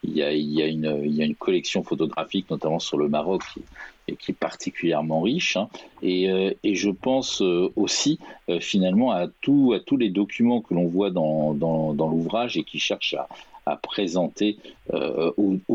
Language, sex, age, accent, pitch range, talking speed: French, male, 50-69, French, 80-115 Hz, 185 wpm